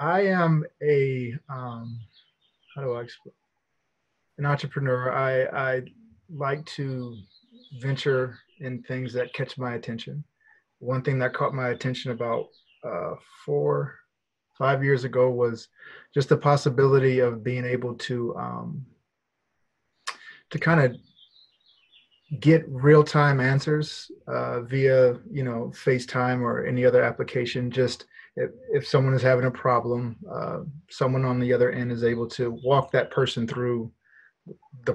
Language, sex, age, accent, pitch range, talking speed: English, male, 20-39, American, 125-150 Hz, 135 wpm